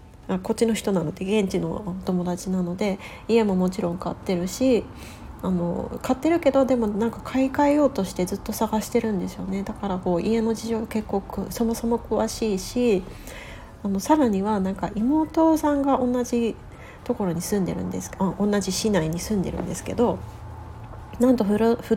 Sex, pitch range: female, 175-230 Hz